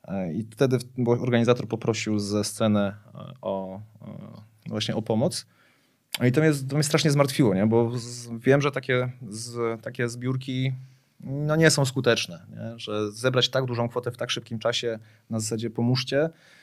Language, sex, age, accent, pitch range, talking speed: Polish, male, 30-49, native, 110-140 Hz, 160 wpm